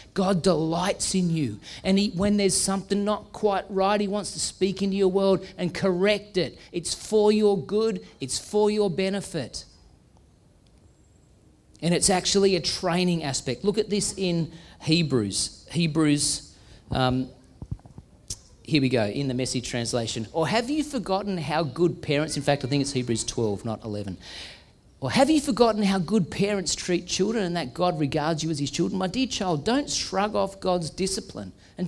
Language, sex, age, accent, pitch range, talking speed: English, male, 40-59, Australian, 115-195 Hz, 170 wpm